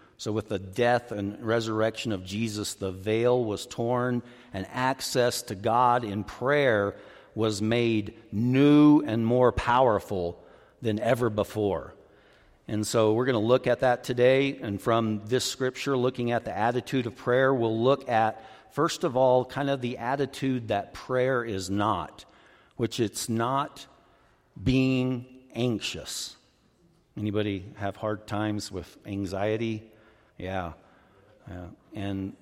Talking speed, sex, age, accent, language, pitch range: 135 wpm, male, 50-69, American, English, 105-125 Hz